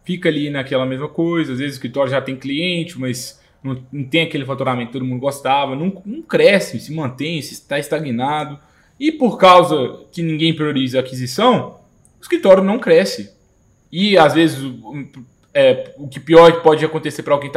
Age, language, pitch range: 20-39, English, 140-185 Hz